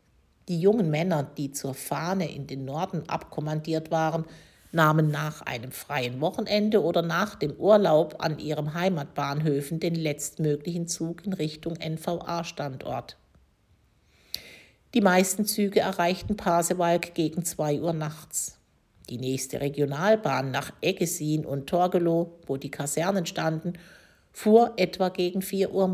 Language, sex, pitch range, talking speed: German, female, 150-185 Hz, 125 wpm